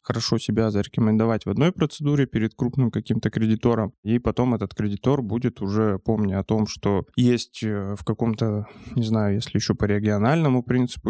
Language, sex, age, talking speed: Russian, male, 20-39, 160 wpm